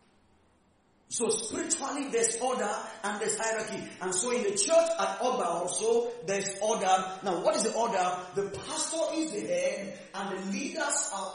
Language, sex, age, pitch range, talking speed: English, male, 40-59, 190-260 Hz, 165 wpm